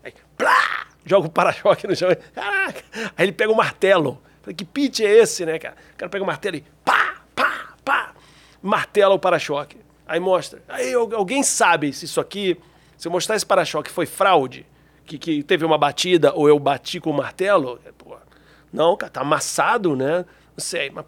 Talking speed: 195 wpm